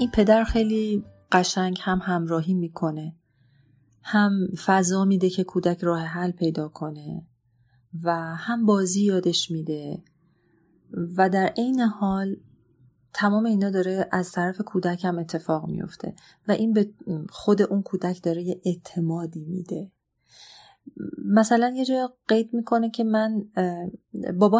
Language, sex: Persian, female